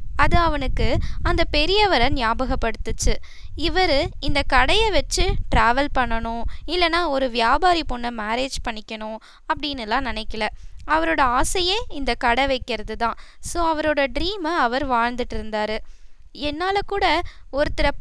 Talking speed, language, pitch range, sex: 110 wpm, Tamil, 240-335 Hz, female